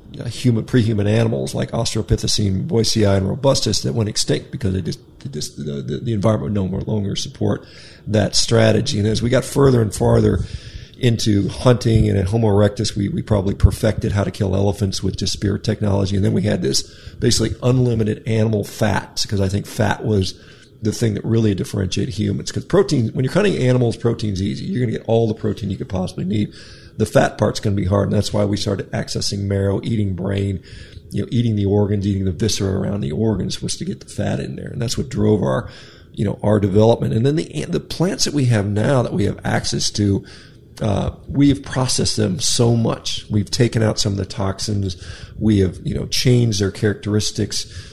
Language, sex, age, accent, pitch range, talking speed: English, male, 40-59, American, 100-115 Hz, 215 wpm